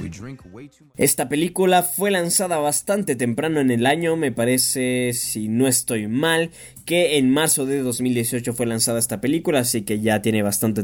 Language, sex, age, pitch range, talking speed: Spanish, male, 20-39, 115-145 Hz, 160 wpm